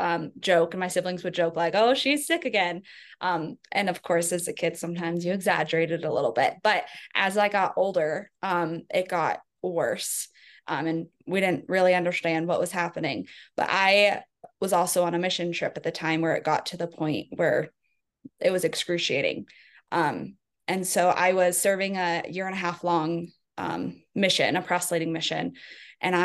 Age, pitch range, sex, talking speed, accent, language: 20-39, 170-205 Hz, female, 190 wpm, American, English